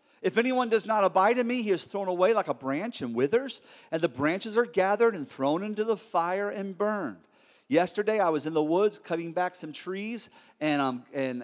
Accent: American